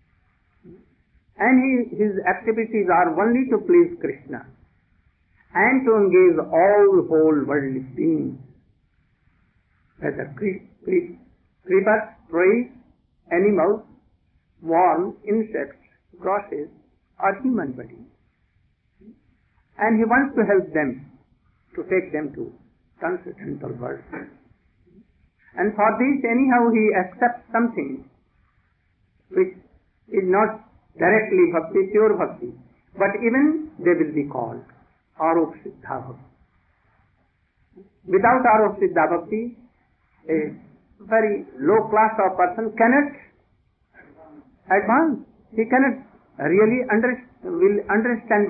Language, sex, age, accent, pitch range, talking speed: English, male, 60-79, Indian, 175-245 Hz, 95 wpm